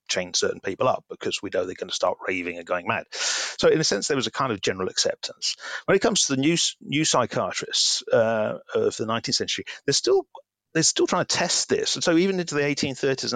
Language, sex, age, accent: English, male, 40-59, British